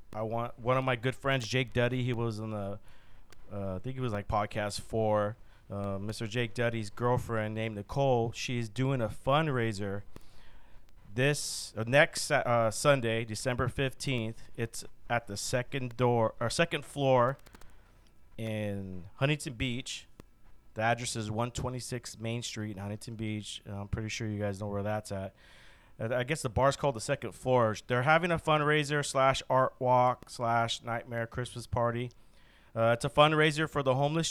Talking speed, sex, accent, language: 165 wpm, male, American, English